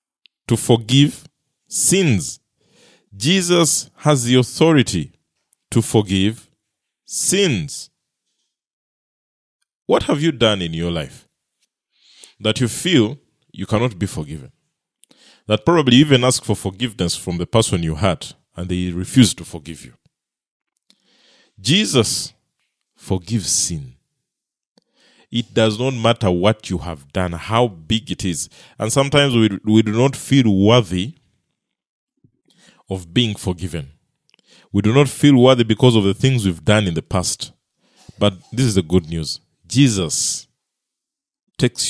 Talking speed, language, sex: 125 wpm, English, male